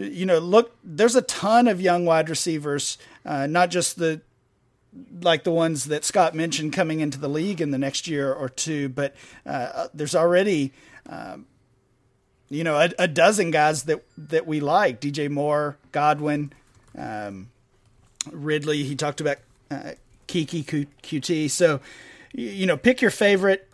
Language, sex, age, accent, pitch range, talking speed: English, male, 40-59, American, 145-180 Hz, 155 wpm